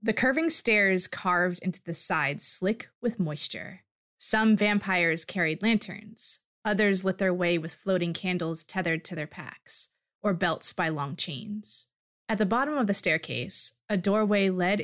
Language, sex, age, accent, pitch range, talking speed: English, female, 20-39, American, 170-220 Hz, 160 wpm